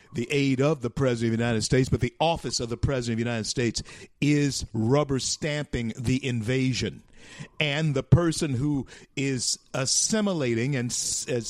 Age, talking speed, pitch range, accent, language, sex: 50-69, 165 wpm, 115-150 Hz, American, English, male